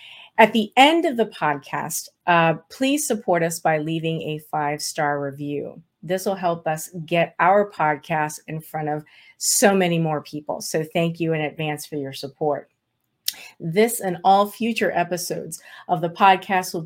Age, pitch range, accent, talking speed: 40-59, 155-185 Hz, American, 165 wpm